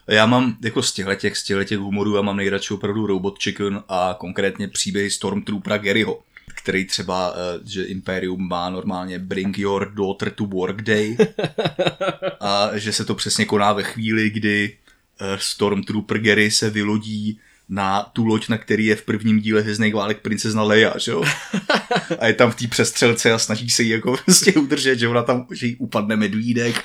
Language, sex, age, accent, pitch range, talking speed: Czech, male, 20-39, native, 105-125 Hz, 165 wpm